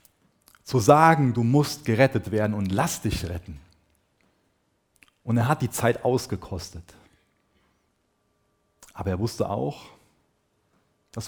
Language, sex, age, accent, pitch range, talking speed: German, male, 40-59, German, 95-140 Hz, 110 wpm